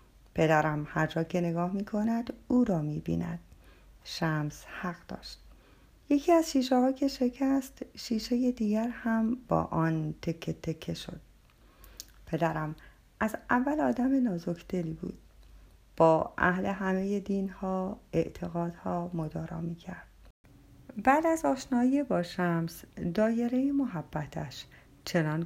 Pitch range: 160-240 Hz